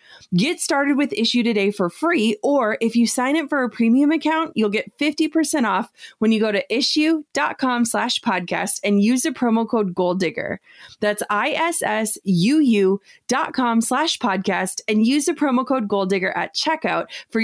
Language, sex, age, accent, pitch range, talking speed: English, female, 20-39, American, 195-275 Hz, 170 wpm